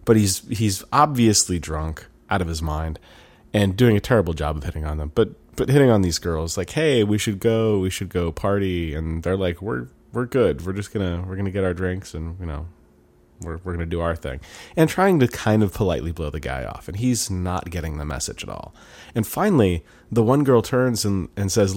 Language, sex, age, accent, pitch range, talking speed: English, male, 30-49, American, 85-120 Hz, 230 wpm